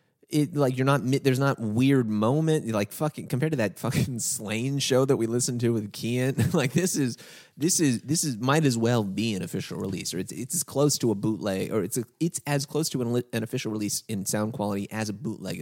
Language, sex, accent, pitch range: English, male, American, 105-135 Hz